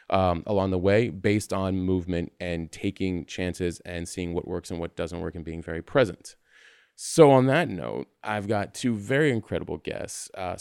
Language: English